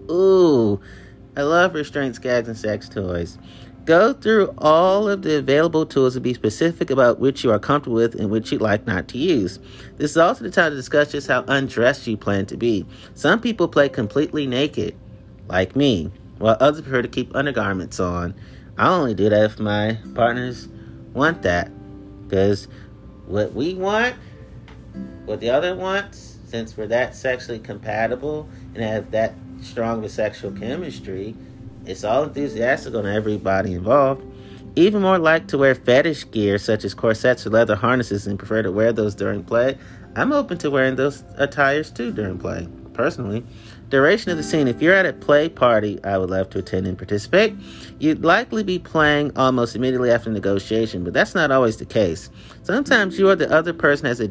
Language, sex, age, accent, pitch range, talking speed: English, male, 30-49, American, 105-145 Hz, 180 wpm